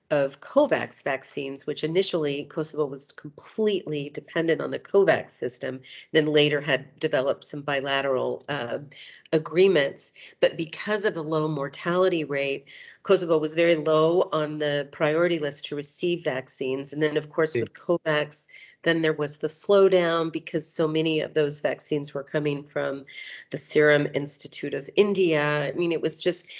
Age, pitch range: 40-59, 145-170 Hz